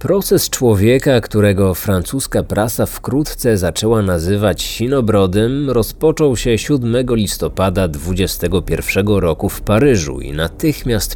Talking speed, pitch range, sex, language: 100 wpm, 95-125 Hz, male, Polish